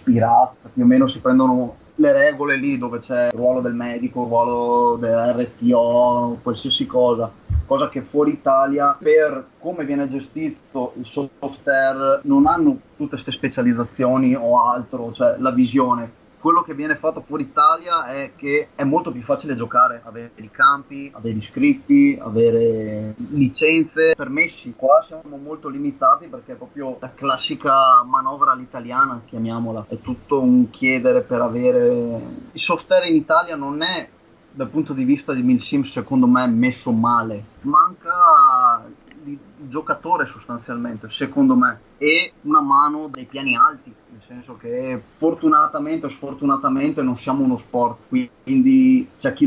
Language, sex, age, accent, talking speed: Italian, male, 30-49, native, 145 wpm